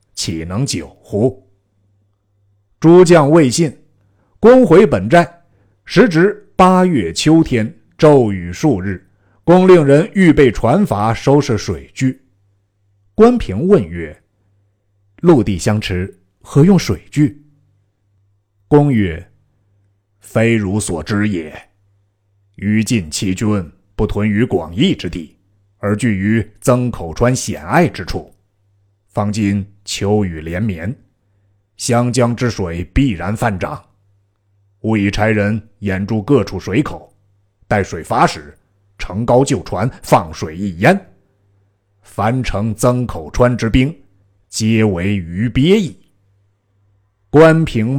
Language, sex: Chinese, male